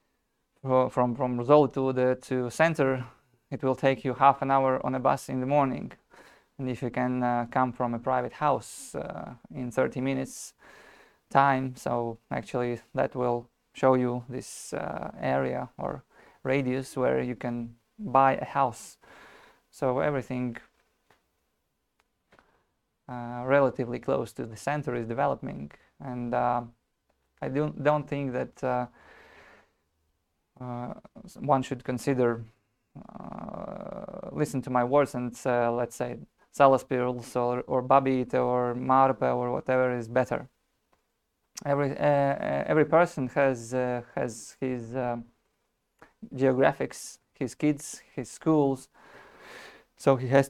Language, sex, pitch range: English, male, 120-135 Hz